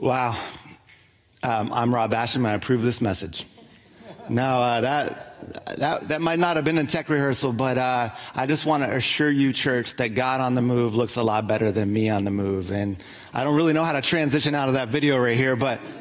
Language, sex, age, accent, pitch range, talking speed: English, male, 30-49, American, 120-155 Hz, 225 wpm